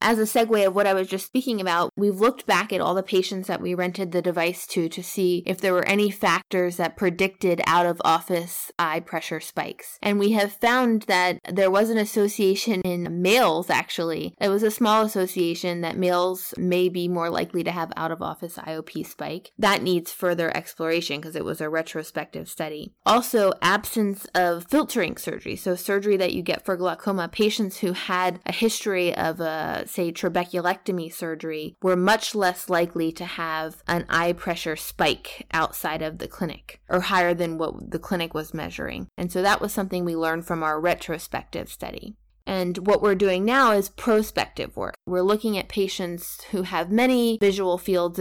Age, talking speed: 20-39, 180 wpm